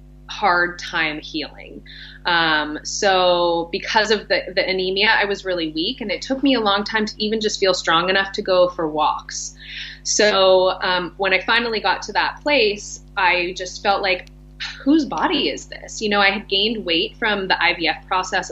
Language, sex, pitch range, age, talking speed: English, female, 170-200 Hz, 20-39, 190 wpm